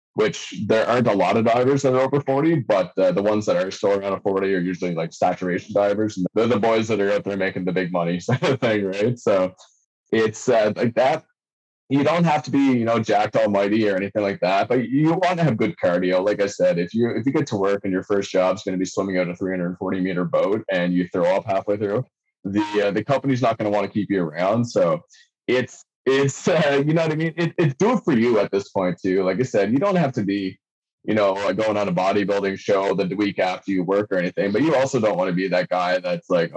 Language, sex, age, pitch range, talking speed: English, male, 20-39, 95-130 Hz, 265 wpm